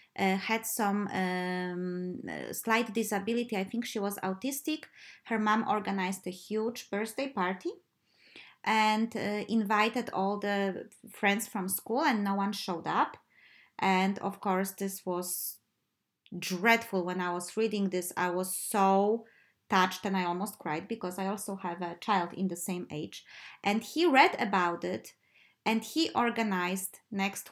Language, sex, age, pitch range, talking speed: English, female, 20-39, 190-230 Hz, 150 wpm